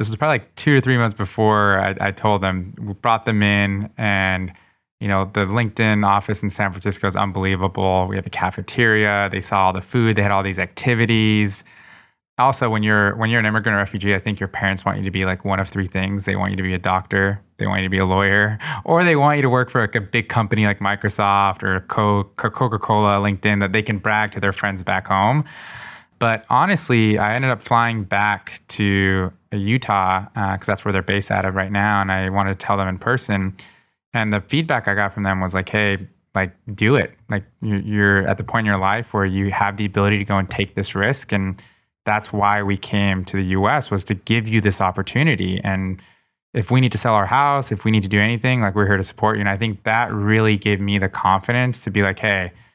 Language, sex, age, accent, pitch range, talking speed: English, male, 20-39, American, 95-110 Hz, 240 wpm